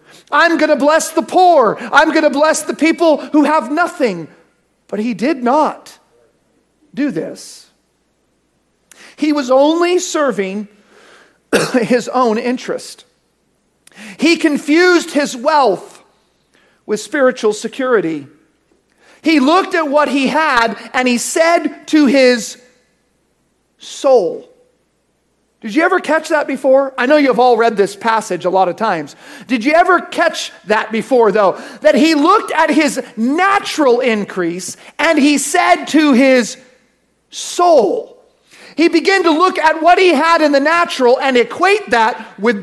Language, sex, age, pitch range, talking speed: English, male, 40-59, 245-335 Hz, 140 wpm